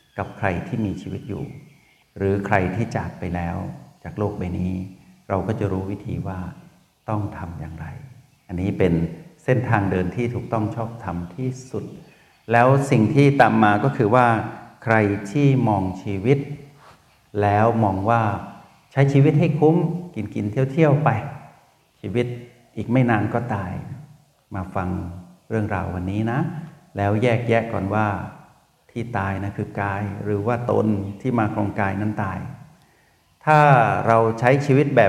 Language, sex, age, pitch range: Thai, male, 60-79, 100-140 Hz